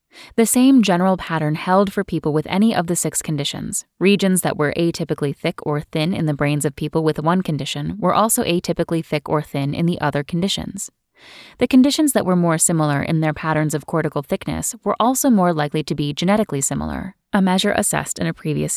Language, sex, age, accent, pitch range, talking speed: English, female, 10-29, American, 155-205 Hz, 205 wpm